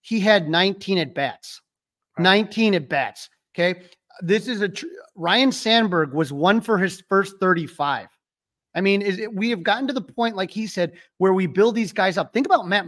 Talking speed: 195 wpm